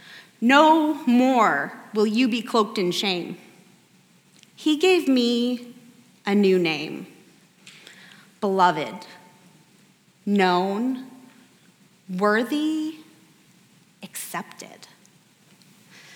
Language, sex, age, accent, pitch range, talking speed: English, female, 30-49, American, 195-255 Hz, 65 wpm